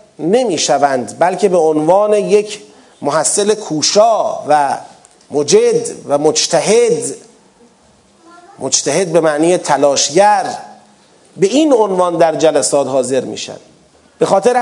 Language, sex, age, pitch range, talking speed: Persian, male, 40-59, 185-240 Hz, 105 wpm